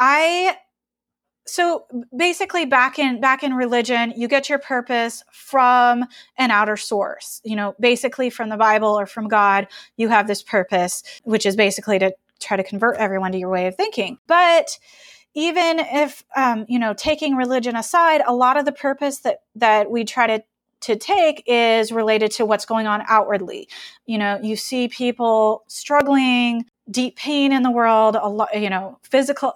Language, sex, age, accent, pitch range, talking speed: English, female, 20-39, American, 225-275 Hz, 175 wpm